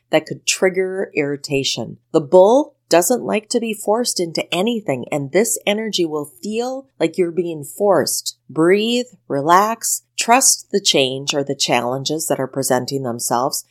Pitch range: 140-190 Hz